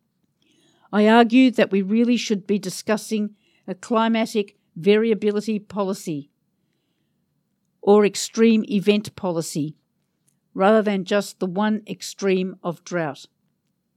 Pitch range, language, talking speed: 185-220 Hz, English, 105 wpm